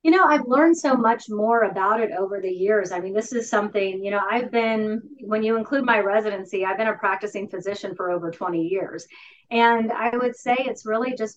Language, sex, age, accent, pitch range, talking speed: English, female, 30-49, American, 190-230 Hz, 220 wpm